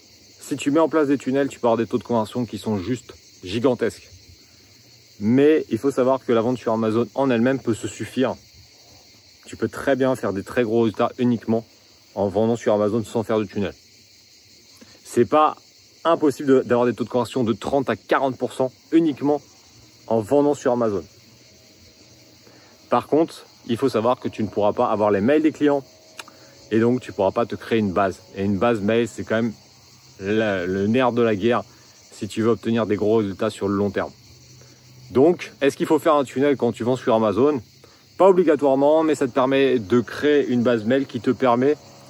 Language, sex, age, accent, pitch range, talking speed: French, male, 40-59, French, 110-135 Hz, 200 wpm